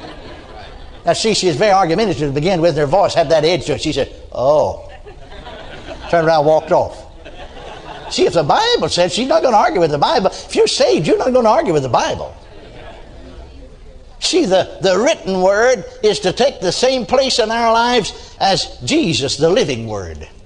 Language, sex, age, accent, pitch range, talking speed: English, male, 60-79, American, 170-255 Hz, 195 wpm